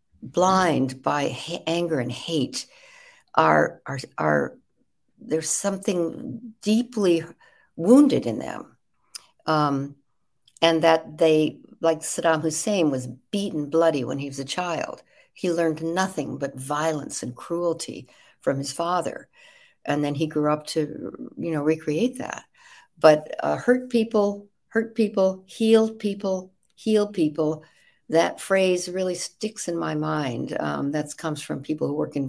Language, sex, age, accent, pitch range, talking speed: English, female, 60-79, American, 150-195 Hz, 140 wpm